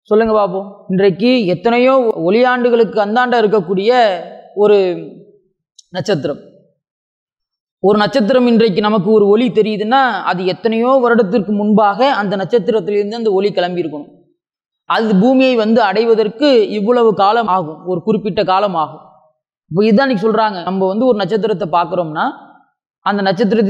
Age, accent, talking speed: 20-39, Indian, 145 wpm